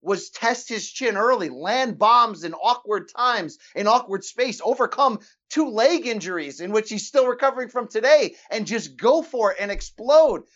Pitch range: 205-265 Hz